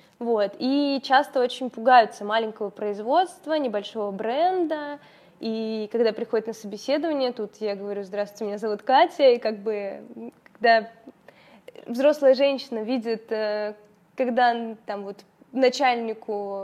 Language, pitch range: Russian, 210-255 Hz